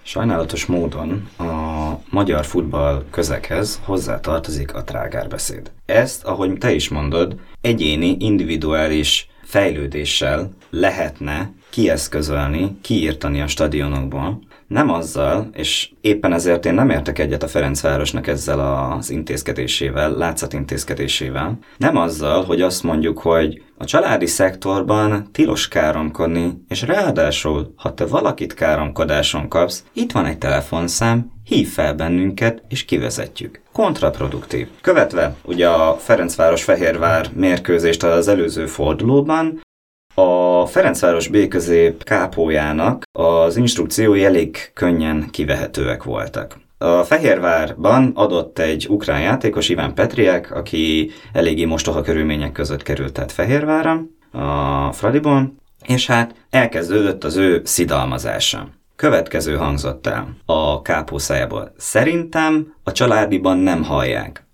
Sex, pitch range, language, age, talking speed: male, 75-105 Hz, Hungarian, 30-49, 110 wpm